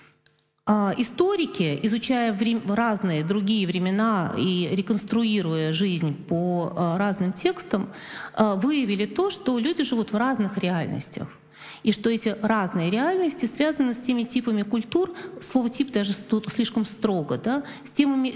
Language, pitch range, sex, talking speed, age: Russian, 190-250 Hz, female, 135 wpm, 30-49